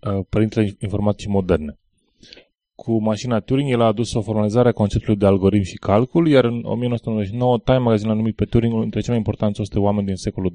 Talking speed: 190 wpm